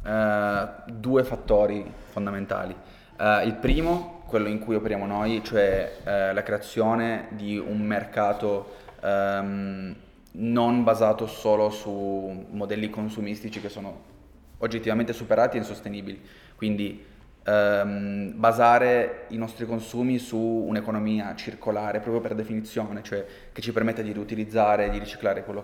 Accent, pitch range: native, 105-115 Hz